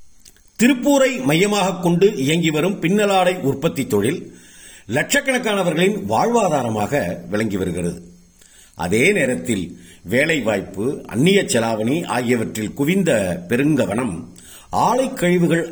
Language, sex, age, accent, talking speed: Tamil, male, 50-69, native, 80 wpm